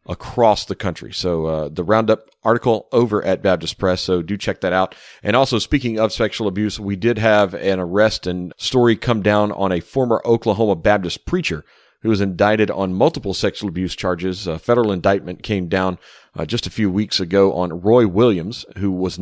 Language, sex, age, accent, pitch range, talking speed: English, male, 40-59, American, 90-110 Hz, 195 wpm